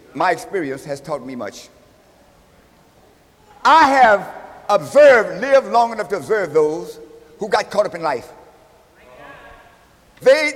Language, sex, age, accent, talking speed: English, male, 50-69, American, 125 wpm